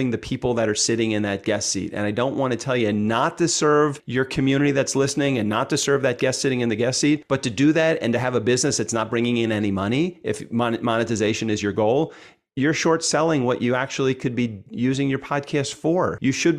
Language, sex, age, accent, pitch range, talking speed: English, male, 40-59, American, 115-140 Hz, 245 wpm